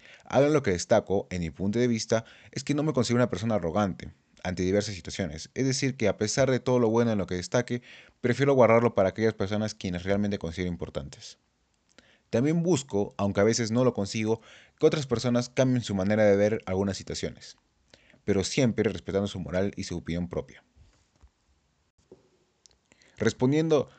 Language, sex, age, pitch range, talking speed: Spanish, male, 30-49, 95-120 Hz, 180 wpm